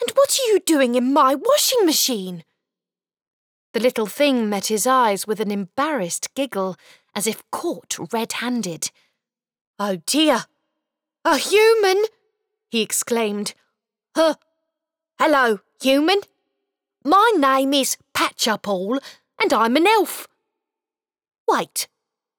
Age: 30-49